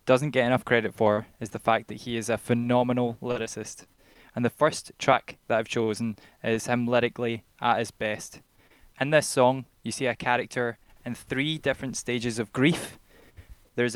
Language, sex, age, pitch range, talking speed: English, male, 10-29, 115-135 Hz, 175 wpm